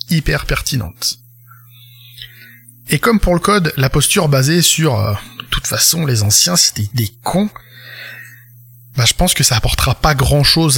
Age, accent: 20-39, French